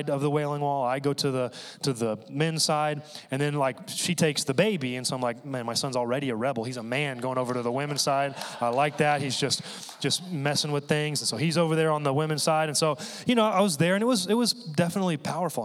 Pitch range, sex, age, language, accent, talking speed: 135-175 Hz, male, 30-49, English, American, 270 wpm